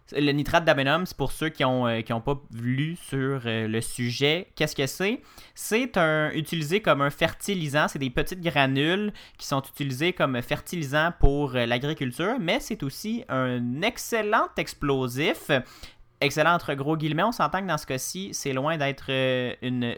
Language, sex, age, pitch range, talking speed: French, male, 30-49, 130-175 Hz, 165 wpm